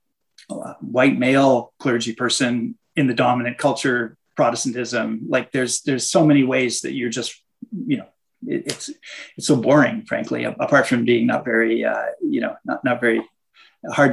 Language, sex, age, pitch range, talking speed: English, male, 30-49, 120-165 Hz, 160 wpm